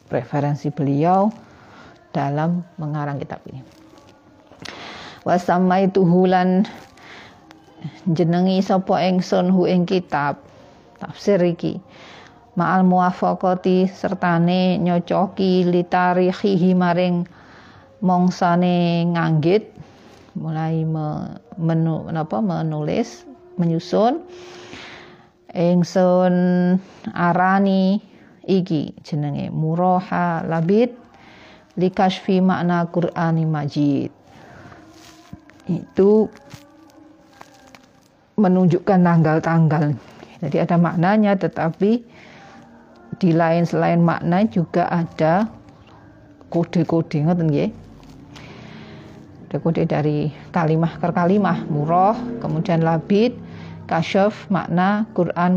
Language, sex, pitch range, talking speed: Indonesian, female, 165-190 Hz, 70 wpm